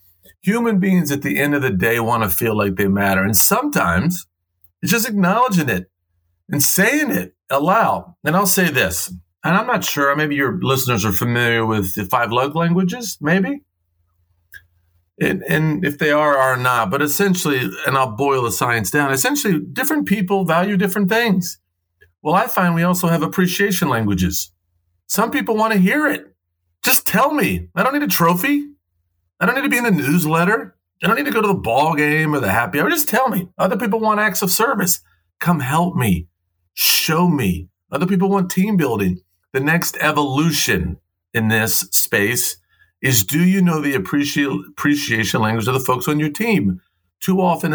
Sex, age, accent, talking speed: male, 40-59, American, 185 wpm